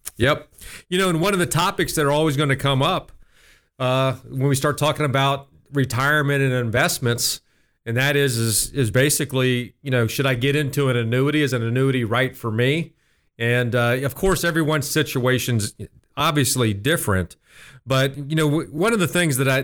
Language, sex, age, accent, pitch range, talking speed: English, male, 40-59, American, 120-145 Hz, 185 wpm